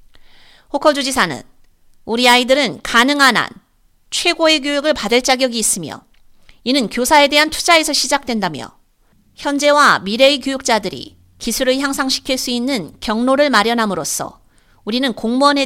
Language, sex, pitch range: Korean, female, 220-285 Hz